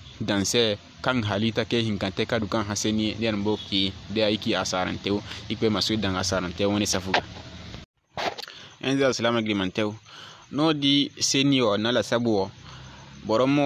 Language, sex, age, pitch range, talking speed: Arabic, male, 20-39, 105-130 Hz, 140 wpm